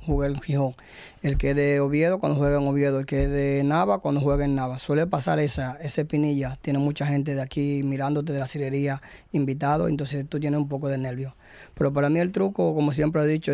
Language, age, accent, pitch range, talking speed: Spanish, 20-39, American, 140-150 Hz, 220 wpm